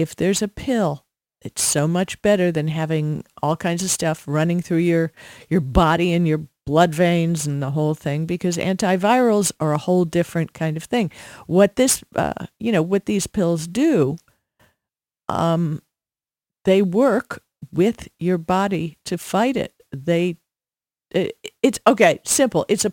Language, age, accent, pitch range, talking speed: English, 50-69, American, 150-185 Hz, 160 wpm